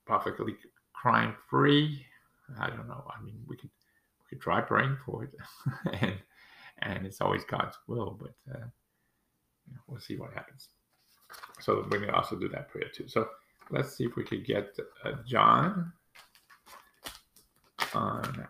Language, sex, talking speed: English, male, 145 wpm